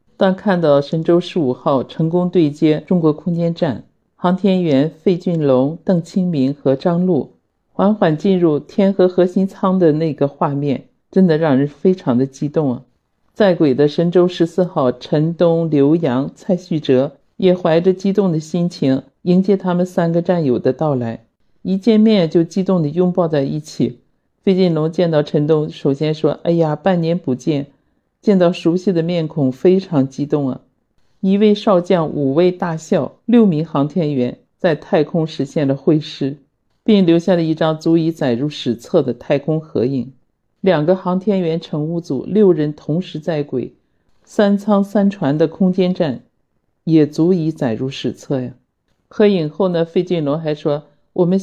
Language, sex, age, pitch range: Chinese, male, 50-69, 145-185 Hz